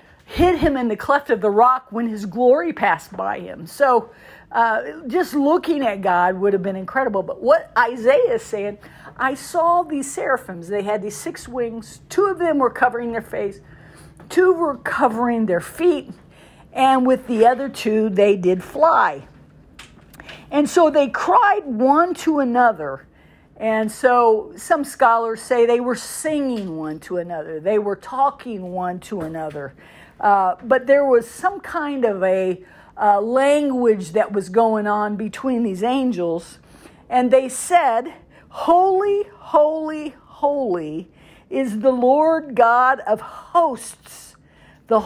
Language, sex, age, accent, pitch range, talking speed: English, female, 50-69, American, 215-290 Hz, 150 wpm